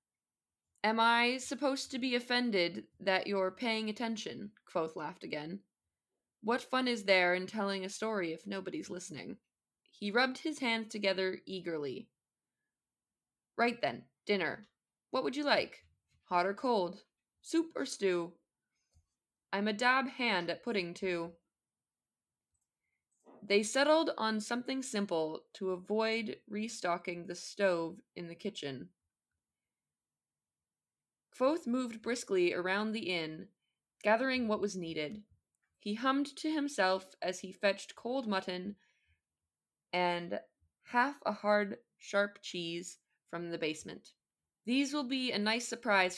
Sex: female